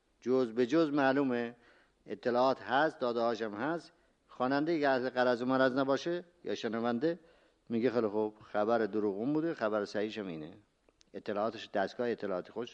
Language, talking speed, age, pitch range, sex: Persian, 140 wpm, 50-69, 115-150 Hz, male